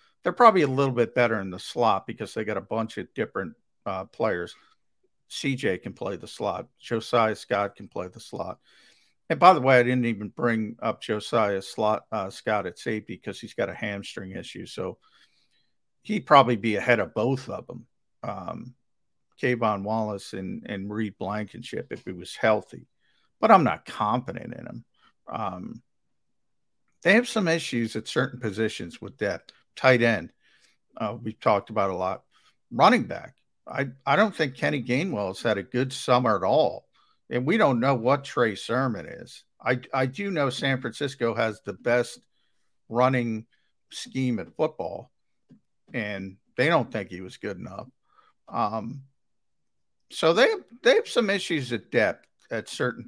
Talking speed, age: 170 wpm, 50-69